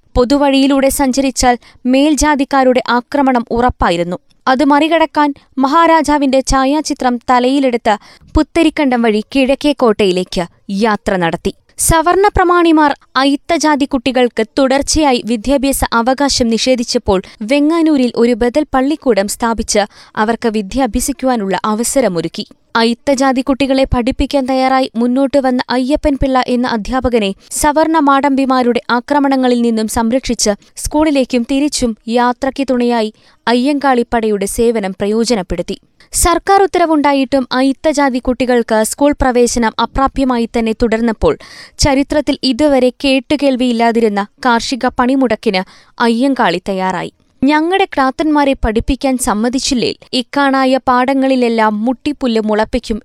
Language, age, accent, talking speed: Malayalam, 20-39, native, 75 wpm